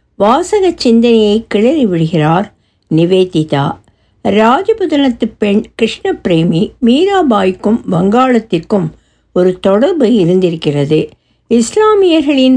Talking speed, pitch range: 70 wpm, 190-280 Hz